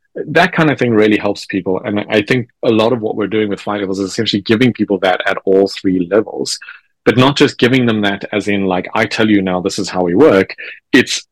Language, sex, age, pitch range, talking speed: Romanian, male, 30-49, 100-125 Hz, 250 wpm